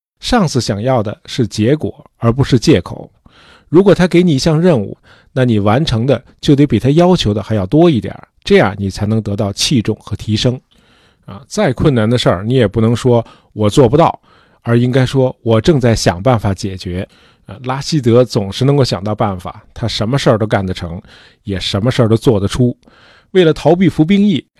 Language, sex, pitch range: Chinese, male, 105-135 Hz